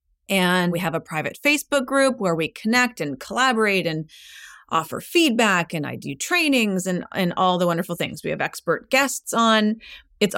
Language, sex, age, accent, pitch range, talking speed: English, female, 30-49, American, 165-220 Hz, 180 wpm